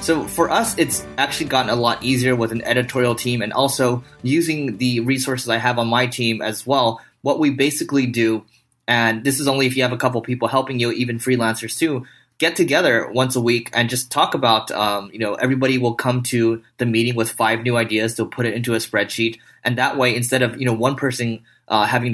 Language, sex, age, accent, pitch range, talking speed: English, male, 20-39, American, 115-125 Hz, 225 wpm